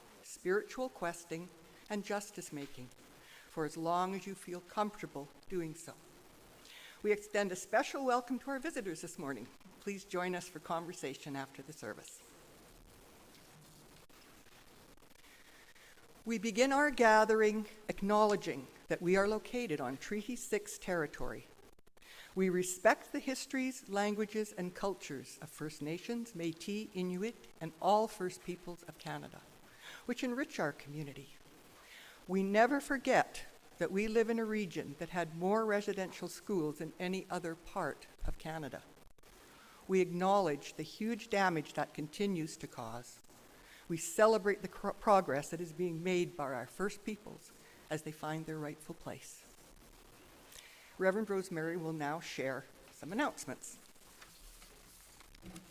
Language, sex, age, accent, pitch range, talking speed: English, female, 60-79, American, 160-215 Hz, 130 wpm